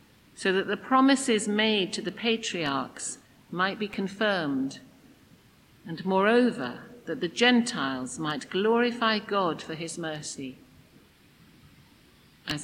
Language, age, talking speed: English, 50-69, 110 wpm